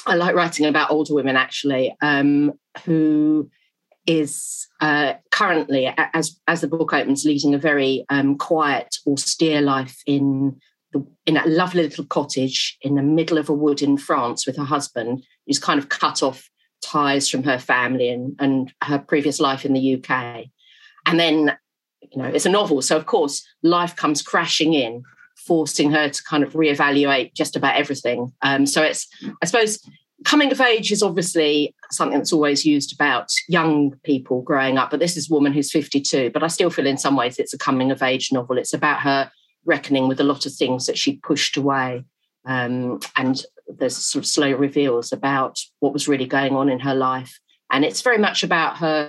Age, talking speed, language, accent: 40-59, 190 wpm, English, British